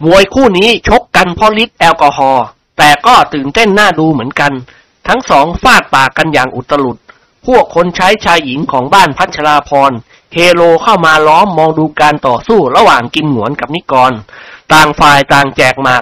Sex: male